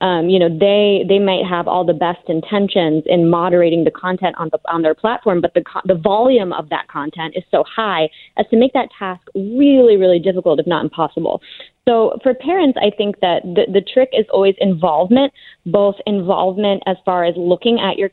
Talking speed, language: 200 wpm, English